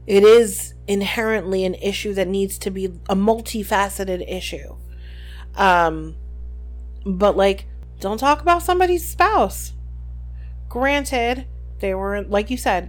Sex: female